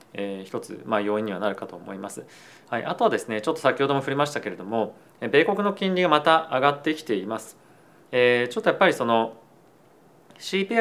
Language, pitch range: Japanese, 115-180 Hz